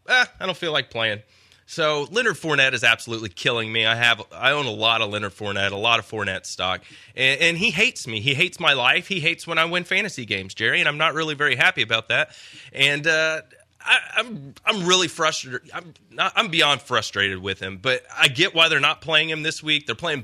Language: English